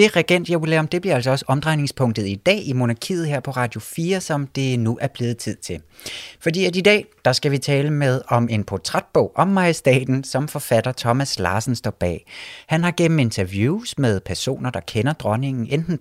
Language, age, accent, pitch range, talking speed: Danish, 30-49, native, 110-155 Hz, 210 wpm